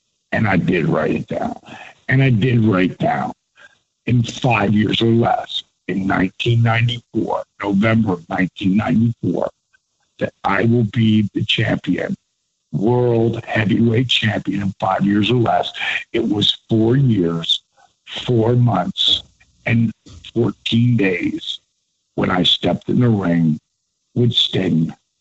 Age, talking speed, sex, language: 60-79, 125 wpm, male, English